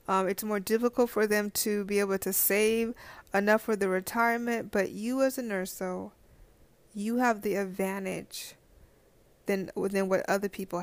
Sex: female